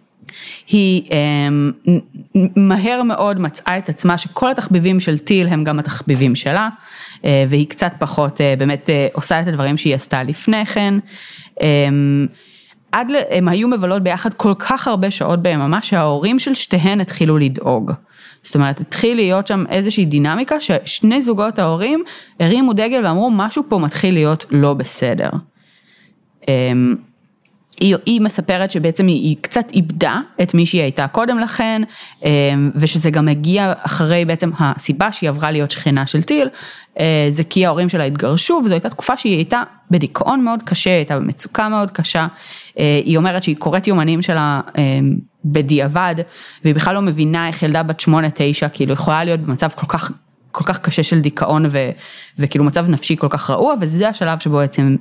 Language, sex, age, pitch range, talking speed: Hebrew, female, 30-49, 150-200 Hz, 155 wpm